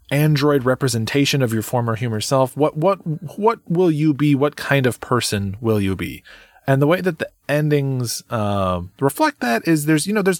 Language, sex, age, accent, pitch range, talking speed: English, male, 20-39, American, 105-150 Hz, 200 wpm